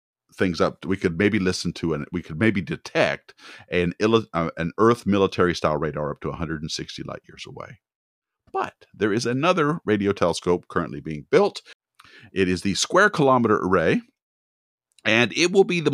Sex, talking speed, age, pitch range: male, 175 wpm, 50-69, 85-135 Hz